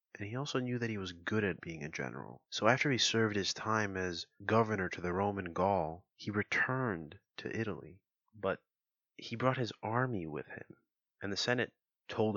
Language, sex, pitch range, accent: English, male, 95-120 Hz, American